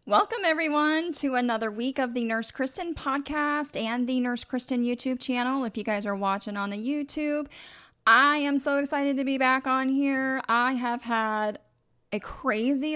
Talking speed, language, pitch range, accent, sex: 175 wpm, English, 200-260 Hz, American, female